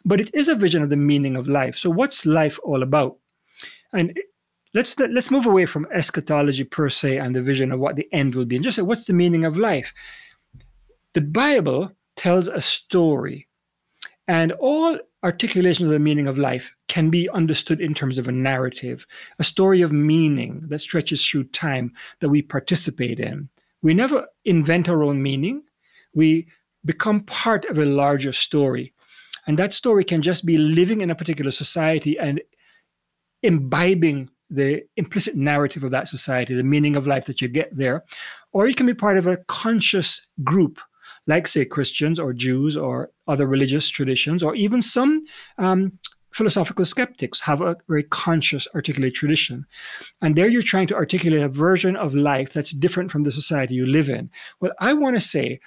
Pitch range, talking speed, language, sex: 145-190 Hz, 180 wpm, English, male